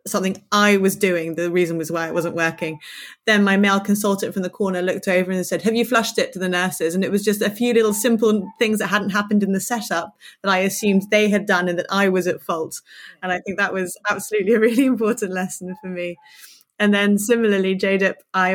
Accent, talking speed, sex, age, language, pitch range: British, 235 wpm, female, 30-49, English, 185-215 Hz